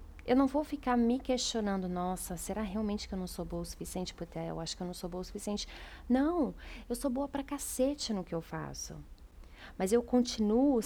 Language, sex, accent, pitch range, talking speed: Portuguese, female, Brazilian, 170-230 Hz, 215 wpm